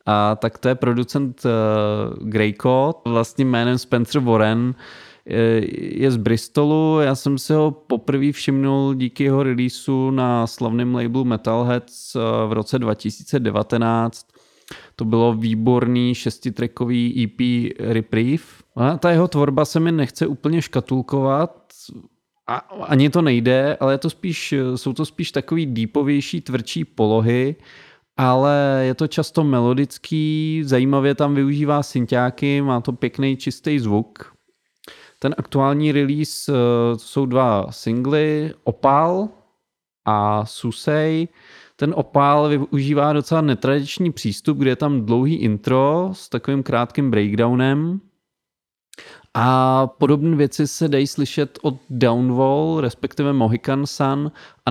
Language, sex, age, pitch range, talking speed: Czech, male, 20-39, 120-145 Hz, 120 wpm